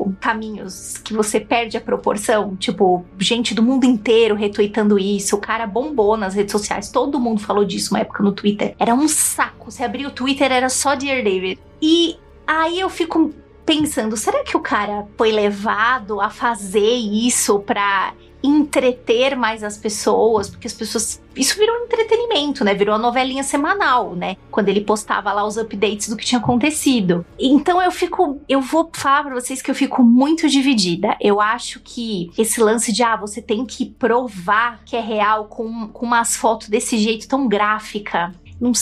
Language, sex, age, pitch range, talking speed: Portuguese, female, 20-39, 210-265 Hz, 180 wpm